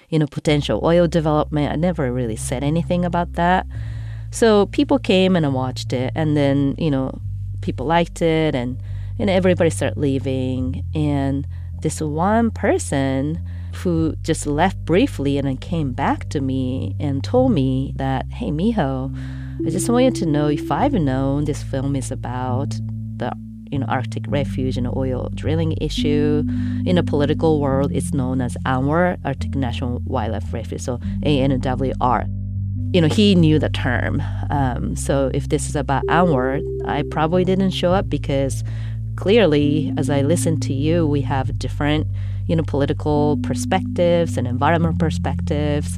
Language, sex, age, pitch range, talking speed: English, female, 30-49, 95-145 Hz, 160 wpm